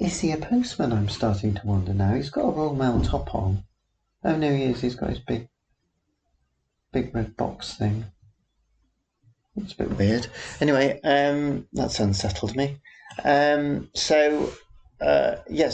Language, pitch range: English, 100-125 Hz